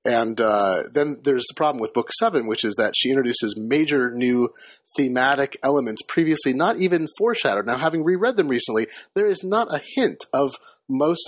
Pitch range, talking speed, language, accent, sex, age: 130-200 Hz, 180 wpm, English, American, male, 30-49